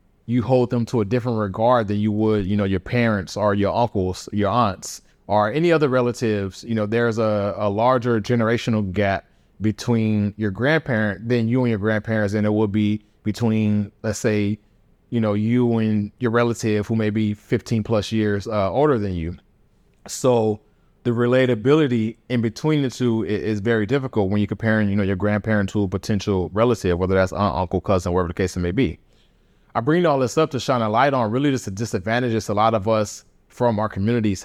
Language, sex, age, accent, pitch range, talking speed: English, male, 30-49, American, 100-120 Hz, 200 wpm